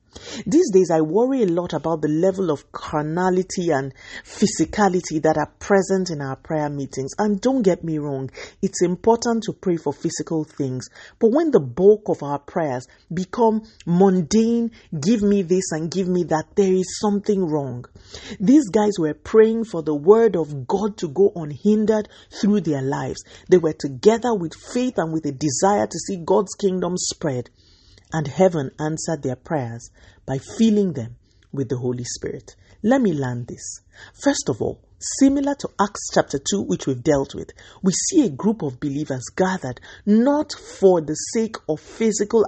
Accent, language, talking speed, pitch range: Nigerian, English, 170 wpm, 150-210 Hz